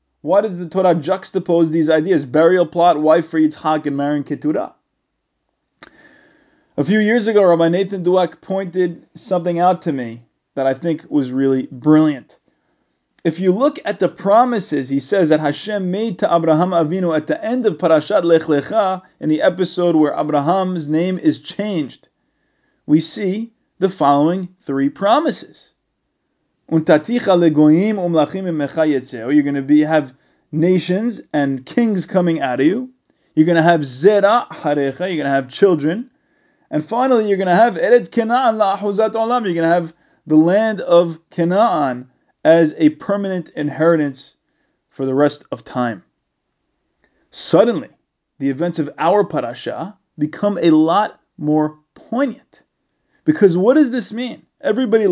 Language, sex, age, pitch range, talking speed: English, male, 20-39, 155-210 Hz, 145 wpm